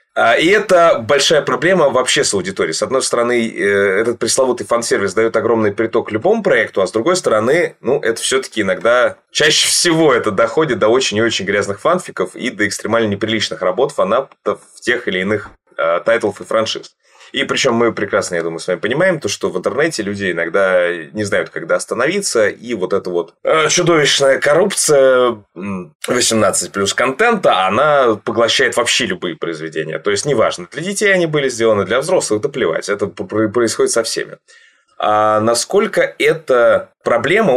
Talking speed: 165 wpm